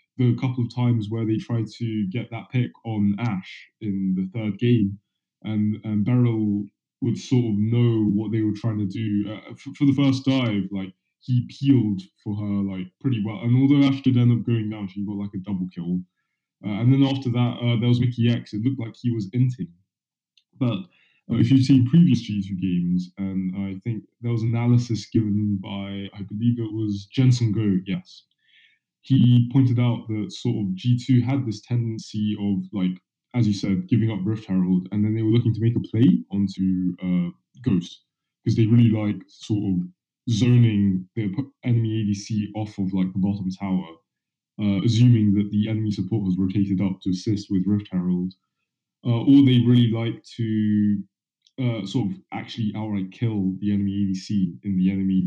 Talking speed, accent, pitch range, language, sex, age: 190 wpm, British, 100-120 Hz, English, male, 10-29